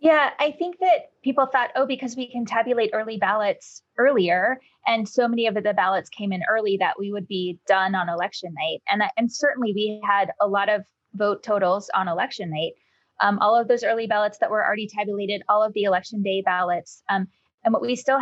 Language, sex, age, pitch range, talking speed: English, female, 20-39, 190-225 Hz, 215 wpm